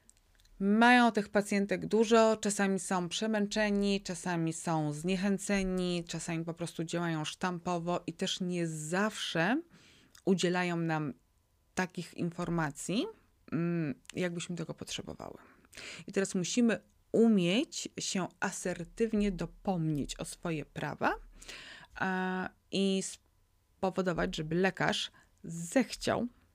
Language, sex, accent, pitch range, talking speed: Polish, female, native, 160-195 Hz, 95 wpm